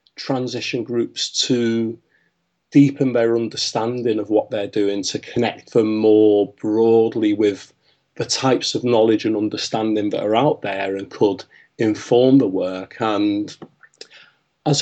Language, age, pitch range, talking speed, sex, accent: English, 30-49, 105-125 Hz, 135 wpm, male, British